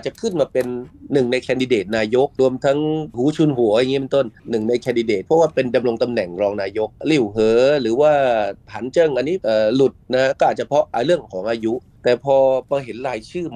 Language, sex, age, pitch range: Thai, male, 30-49, 110-135 Hz